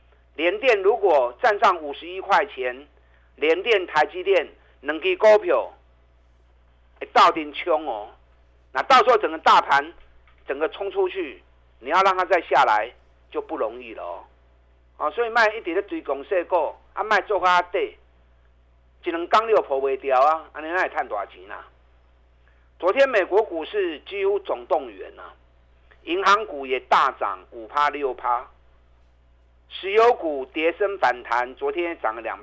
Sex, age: male, 50-69